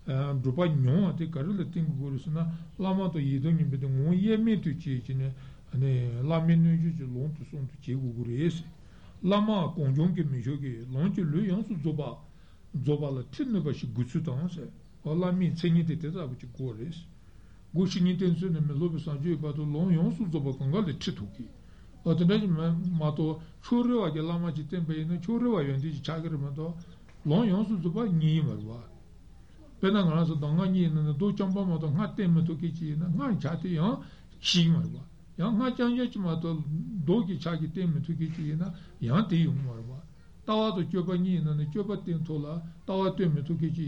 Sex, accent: male, Turkish